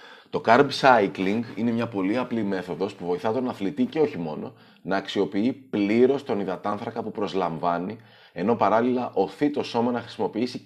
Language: Greek